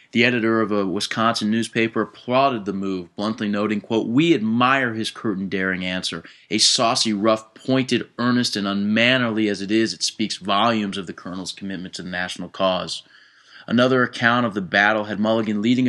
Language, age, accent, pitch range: English, 30-49, American, 100-120 Hz